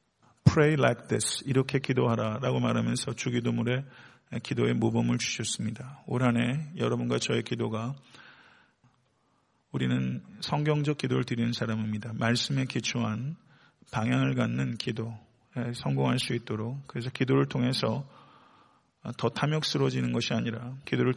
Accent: native